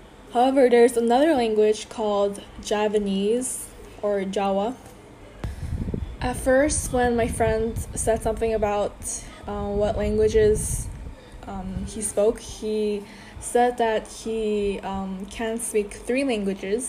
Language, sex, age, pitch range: Korean, female, 10-29, 205-230 Hz